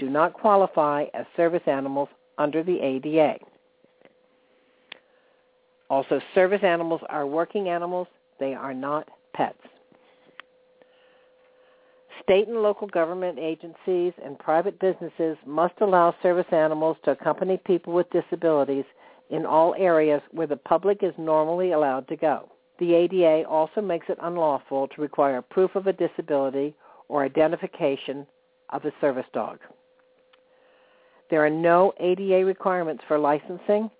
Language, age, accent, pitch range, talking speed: English, 60-79, American, 155-210 Hz, 125 wpm